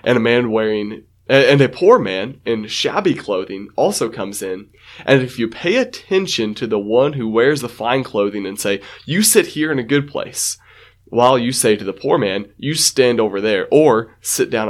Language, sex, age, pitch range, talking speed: English, male, 20-39, 105-135 Hz, 205 wpm